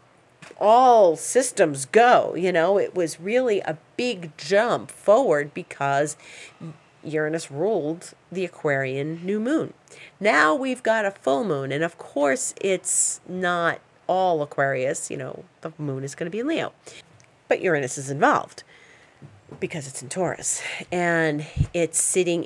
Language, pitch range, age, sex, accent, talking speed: English, 150-200 Hz, 40-59, female, American, 140 wpm